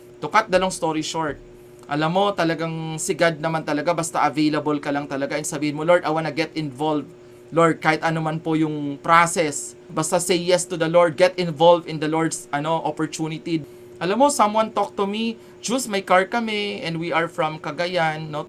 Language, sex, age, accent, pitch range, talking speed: Filipino, male, 30-49, native, 145-180 Hz, 190 wpm